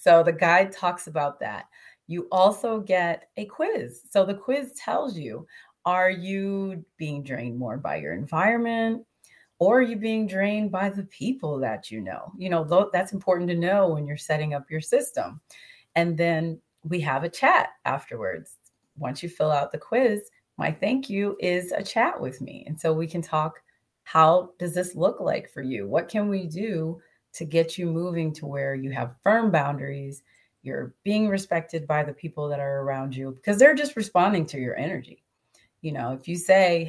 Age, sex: 30-49, female